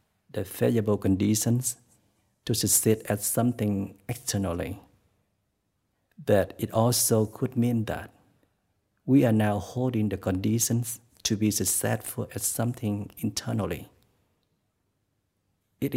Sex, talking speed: male, 100 wpm